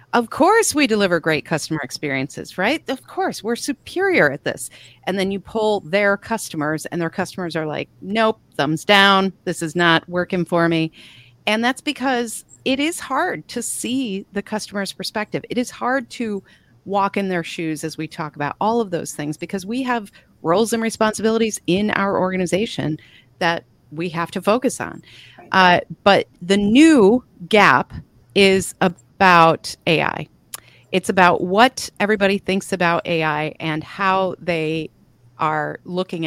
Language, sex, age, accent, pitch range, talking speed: English, female, 40-59, American, 160-210 Hz, 160 wpm